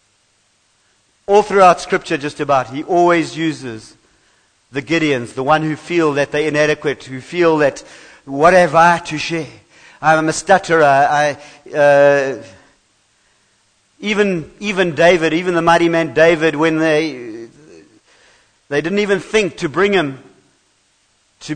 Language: English